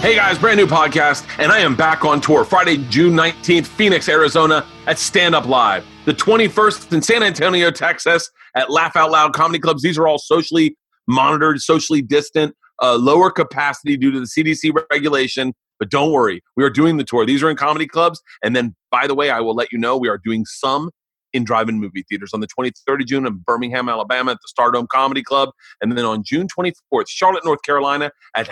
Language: English